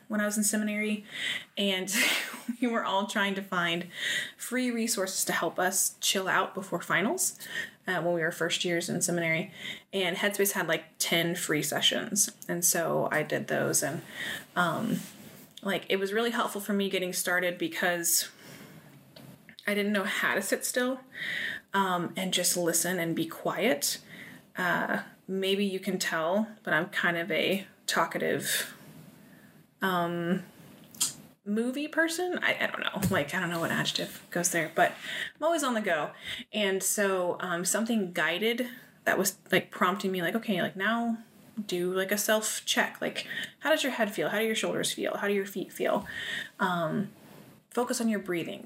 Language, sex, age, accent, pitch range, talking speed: English, female, 20-39, American, 180-215 Hz, 170 wpm